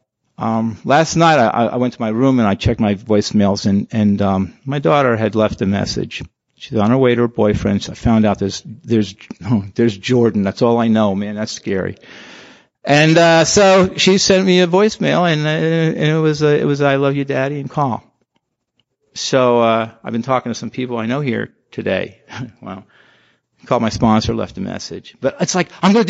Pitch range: 110-155 Hz